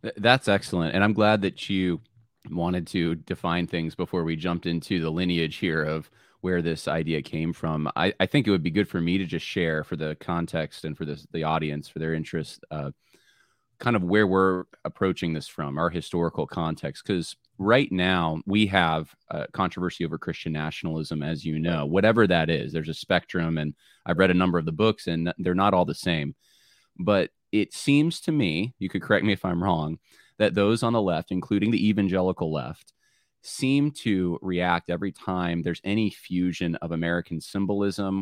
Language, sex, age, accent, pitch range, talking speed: English, male, 30-49, American, 80-95 Hz, 195 wpm